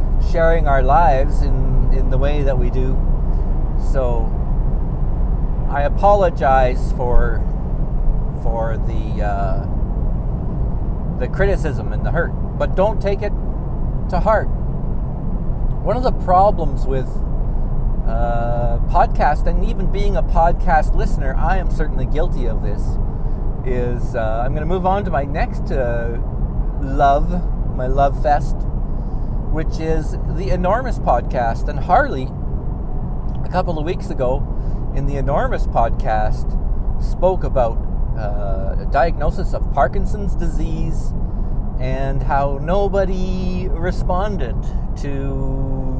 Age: 50-69